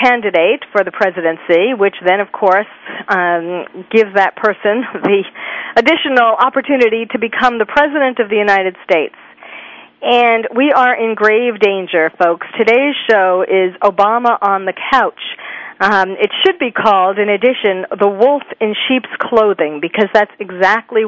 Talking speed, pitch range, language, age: 150 wpm, 195-235 Hz, English, 40-59